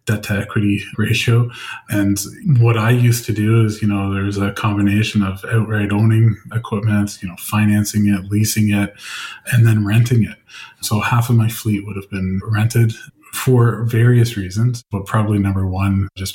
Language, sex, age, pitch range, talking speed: English, male, 20-39, 100-115 Hz, 175 wpm